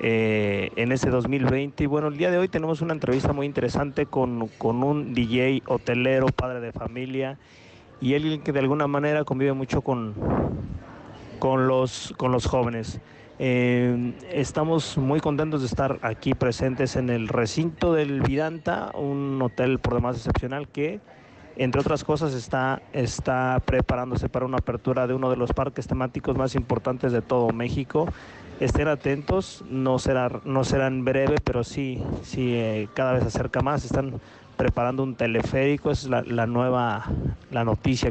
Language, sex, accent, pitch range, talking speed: Spanish, male, Mexican, 125-145 Hz, 155 wpm